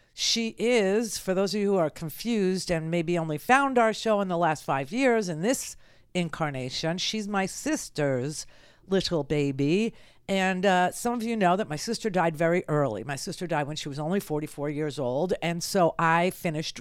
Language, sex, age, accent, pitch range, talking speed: English, female, 50-69, American, 160-225 Hz, 195 wpm